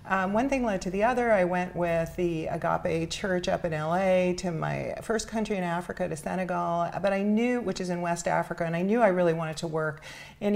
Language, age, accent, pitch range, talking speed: English, 40-59, American, 160-190 Hz, 235 wpm